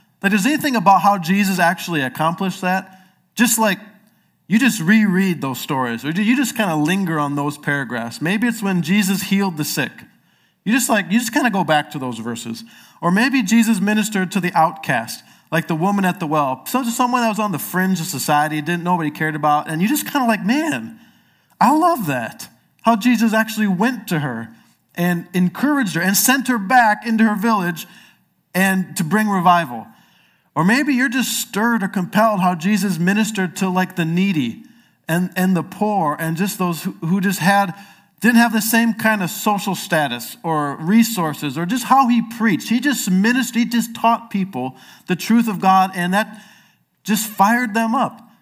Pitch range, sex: 175-230 Hz, male